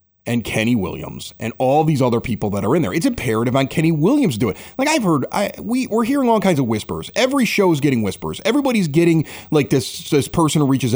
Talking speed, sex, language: 235 wpm, male, English